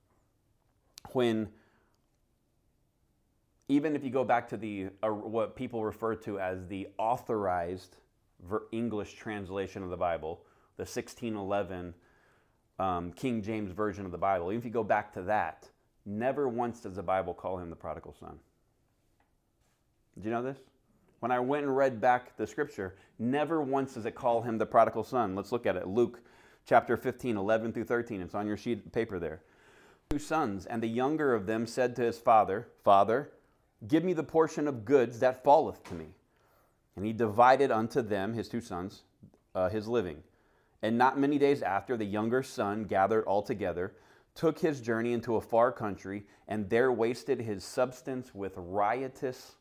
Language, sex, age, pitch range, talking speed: English, male, 30-49, 100-125 Hz, 175 wpm